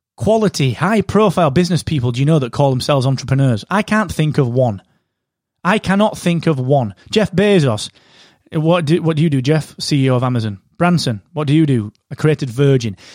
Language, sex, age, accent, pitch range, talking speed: English, male, 30-49, British, 130-185 Hz, 185 wpm